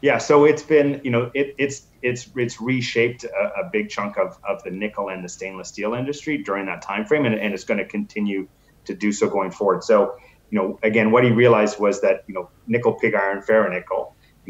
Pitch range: 95-120 Hz